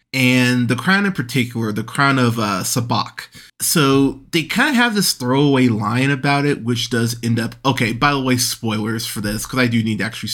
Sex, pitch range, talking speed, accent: male, 115-135 Hz, 215 wpm, American